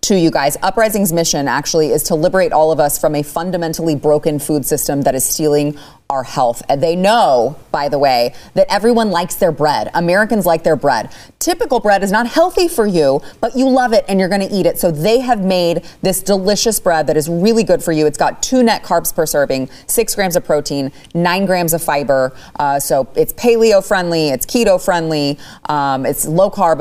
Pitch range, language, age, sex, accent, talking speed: 150-190 Hz, English, 30-49, female, American, 210 wpm